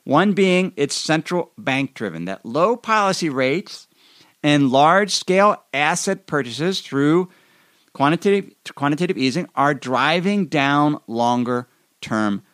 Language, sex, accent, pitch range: English, male, American, 130-190 Hz